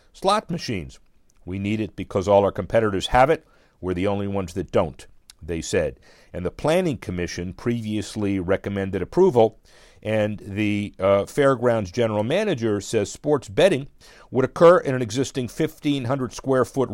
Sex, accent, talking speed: male, American, 150 wpm